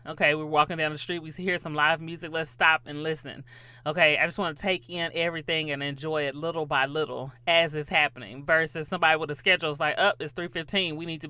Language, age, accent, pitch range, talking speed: English, 30-49, American, 125-165 Hz, 250 wpm